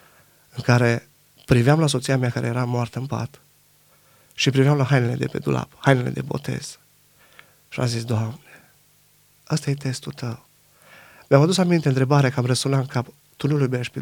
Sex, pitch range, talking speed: male, 125-145 Hz, 175 wpm